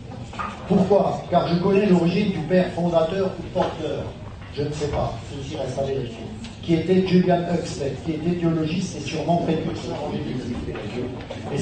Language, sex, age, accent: French, male, 50-69, French